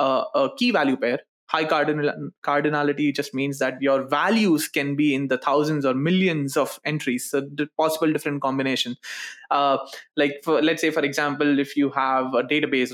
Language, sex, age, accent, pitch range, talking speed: English, male, 20-39, Indian, 140-165 Hz, 170 wpm